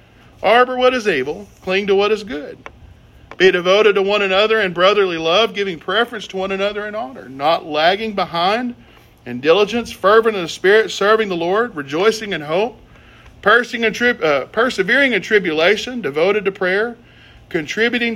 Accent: American